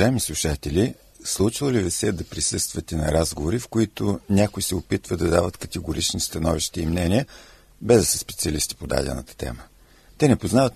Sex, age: male, 50-69